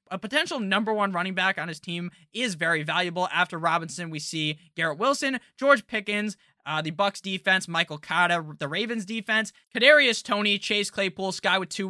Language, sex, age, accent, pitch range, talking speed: English, male, 20-39, American, 170-240 Hz, 180 wpm